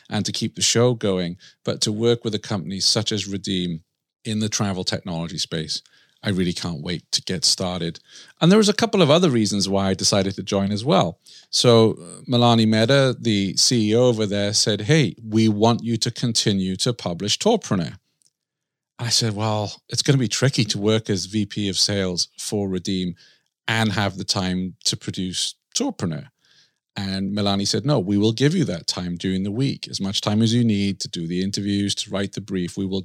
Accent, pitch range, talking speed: British, 100-125 Hz, 205 wpm